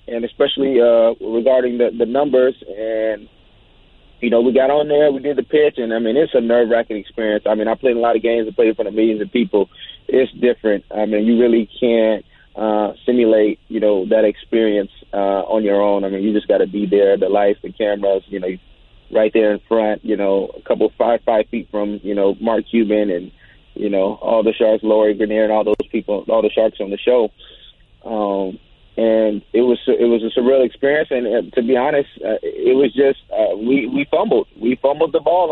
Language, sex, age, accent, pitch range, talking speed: English, male, 30-49, American, 105-135 Hz, 225 wpm